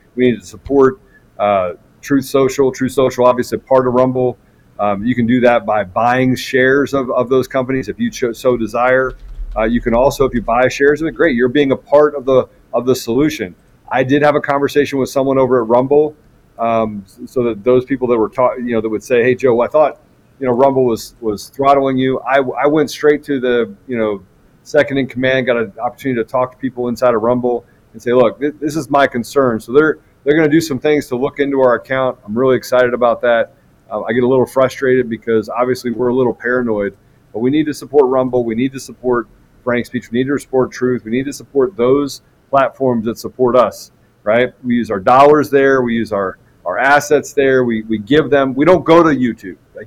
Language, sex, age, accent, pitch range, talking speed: English, male, 40-59, American, 120-140 Hz, 225 wpm